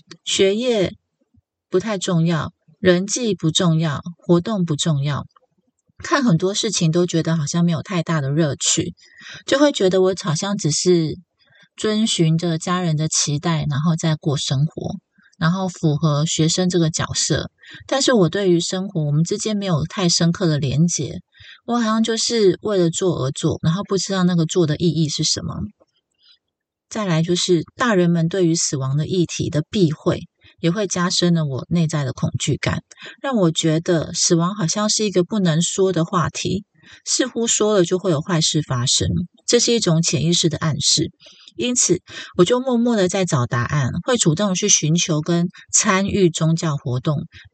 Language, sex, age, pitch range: Chinese, female, 30-49, 160-190 Hz